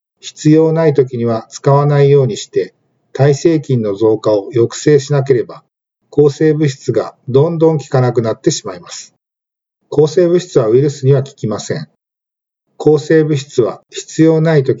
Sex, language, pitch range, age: male, Japanese, 130-155 Hz, 50-69